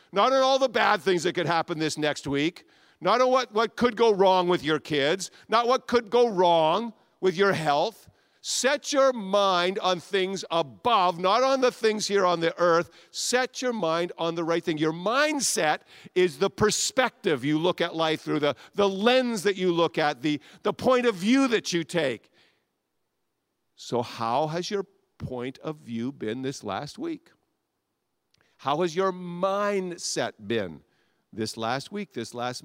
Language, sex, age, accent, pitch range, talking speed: English, male, 50-69, American, 145-205 Hz, 180 wpm